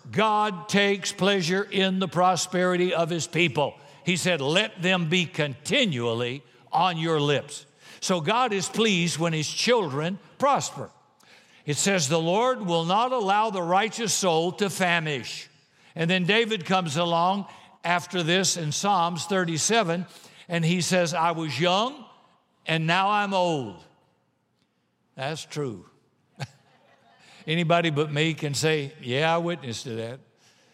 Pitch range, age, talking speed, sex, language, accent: 145-185 Hz, 60-79, 135 wpm, male, English, American